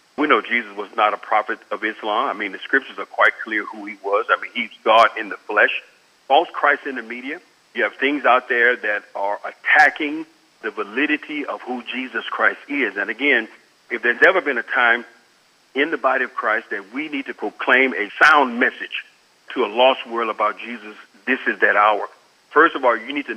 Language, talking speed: English, 215 wpm